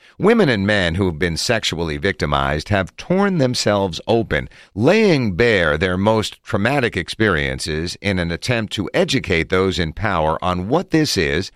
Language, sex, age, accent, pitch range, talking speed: English, male, 50-69, American, 85-125 Hz, 155 wpm